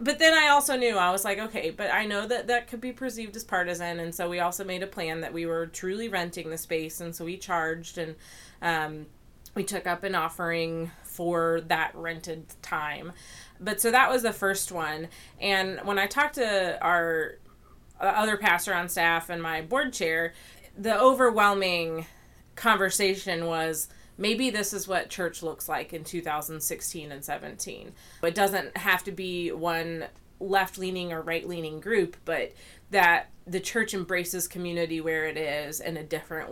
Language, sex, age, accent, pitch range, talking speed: English, female, 30-49, American, 165-195 Hz, 175 wpm